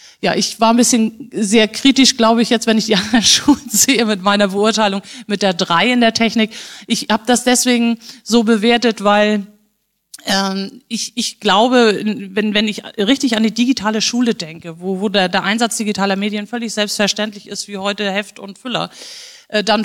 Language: English